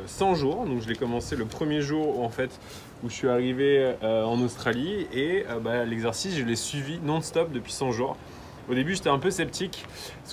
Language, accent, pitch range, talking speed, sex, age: French, French, 115-145 Hz, 210 wpm, male, 20-39